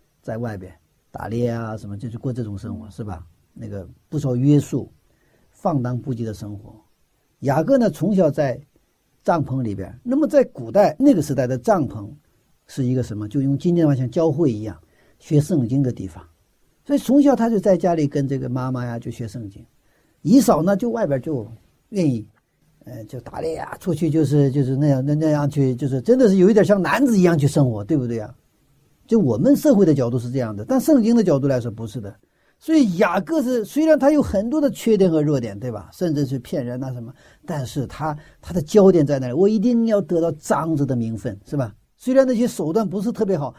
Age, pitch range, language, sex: 50-69, 125-205 Hz, Chinese, male